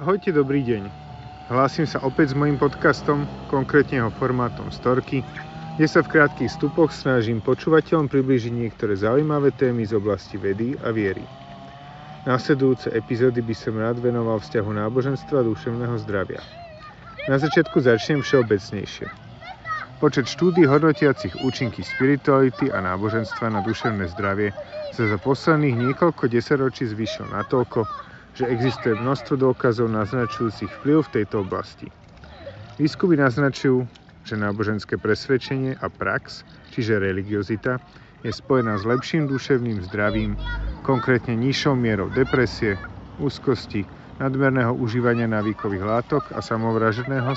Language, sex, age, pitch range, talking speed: Slovak, male, 40-59, 110-140 Hz, 120 wpm